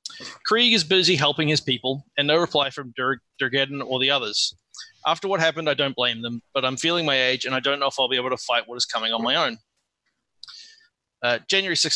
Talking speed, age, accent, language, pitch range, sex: 220 wpm, 20-39, Australian, English, 125-155 Hz, male